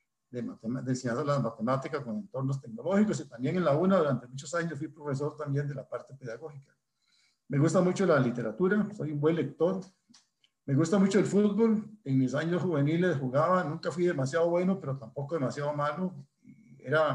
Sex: male